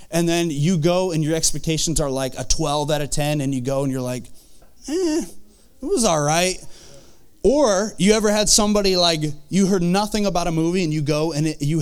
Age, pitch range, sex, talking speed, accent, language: 20-39, 145-195 Hz, male, 215 wpm, American, English